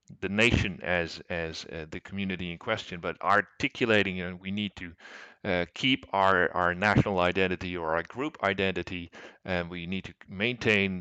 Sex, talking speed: male, 175 wpm